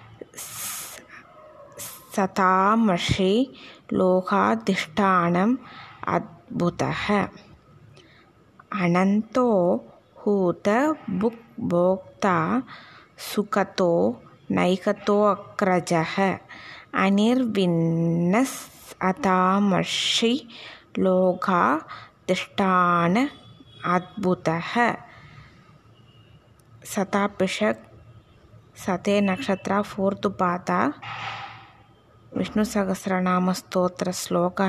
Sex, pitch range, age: female, 170-210 Hz, 20-39